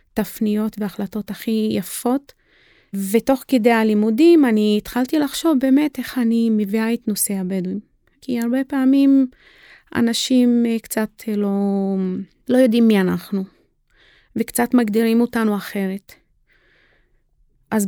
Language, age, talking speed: Hebrew, 30-49, 105 wpm